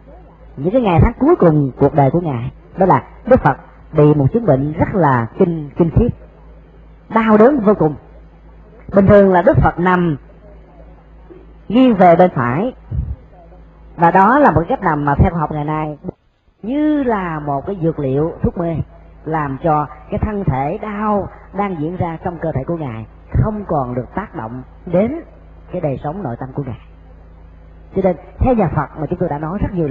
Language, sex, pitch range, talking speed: Vietnamese, male, 125-180 Hz, 195 wpm